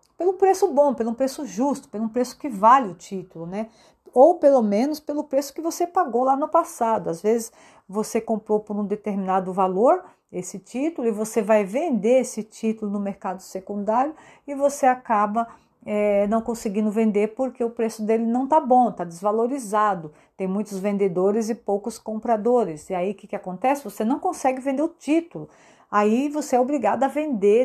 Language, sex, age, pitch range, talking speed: Portuguese, female, 40-59, 210-265 Hz, 180 wpm